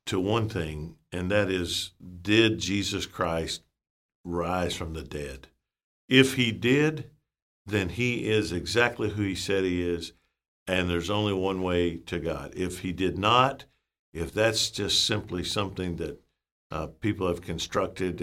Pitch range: 85-110 Hz